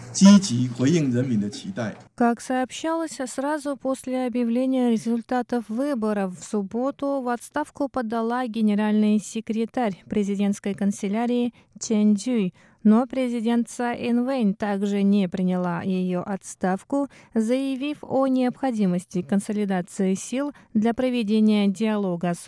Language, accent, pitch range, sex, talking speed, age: Russian, native, 185-245 Hz, female, 95 wpm, 30-49